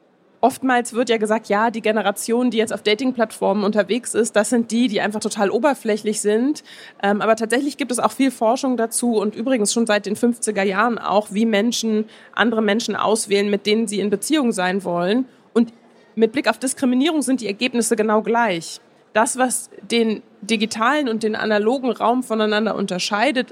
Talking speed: 175 wpm